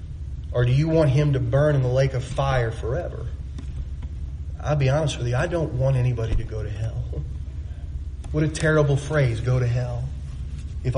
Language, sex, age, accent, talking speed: English, male, 30-49, American, 185 wpm